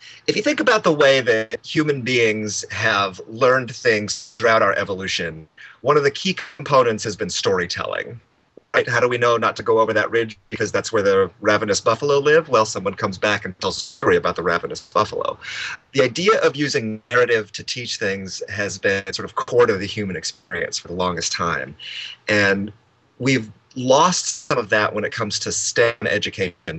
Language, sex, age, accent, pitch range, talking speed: English, male, 30-49, American, 105-150 Hz, 190 wpm